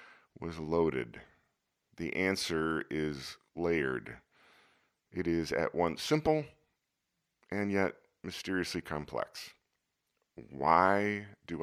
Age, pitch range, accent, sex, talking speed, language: 40-59, 75-100 Hz, American, male, 90 wpm, English